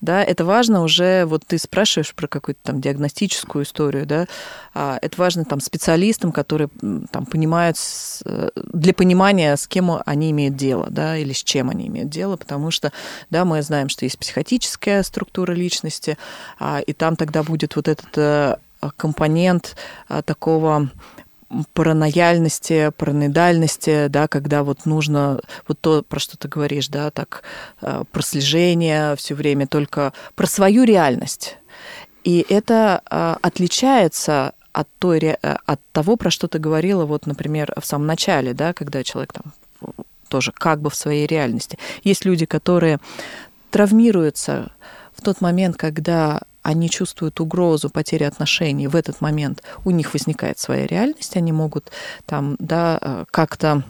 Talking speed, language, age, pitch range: 140 wpm, Russian, 20-39, 150-185 Hz